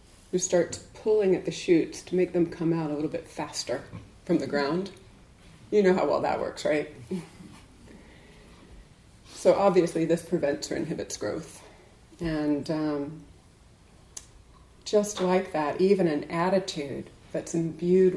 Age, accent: 30-49, American